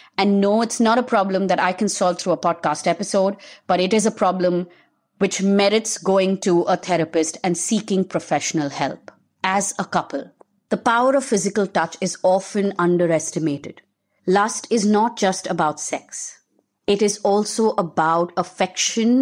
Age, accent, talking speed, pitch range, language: 30-49, Indian, 160 wpm, 170-210 Hz, English